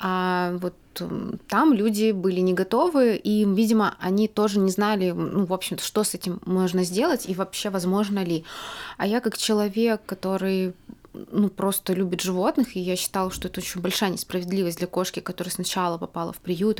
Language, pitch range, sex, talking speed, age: Russian, 180-210 Hz, female, 175 wpm, 20-39